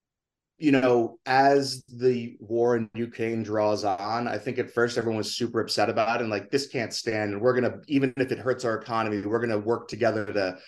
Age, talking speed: 20-39, 225 wpm